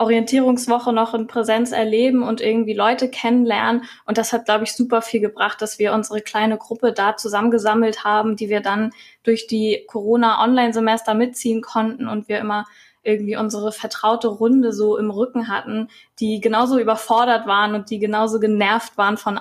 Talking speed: 165 wpm